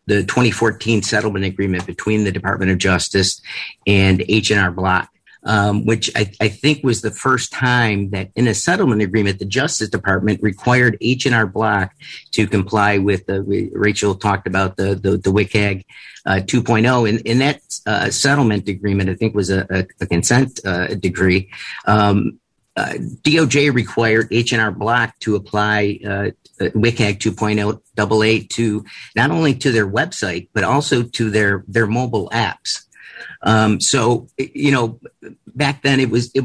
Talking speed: 155 wpm